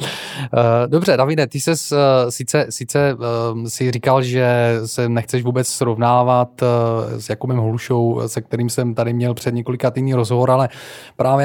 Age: 20-39